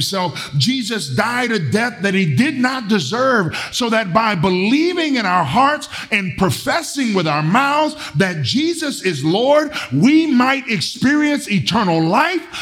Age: 50-69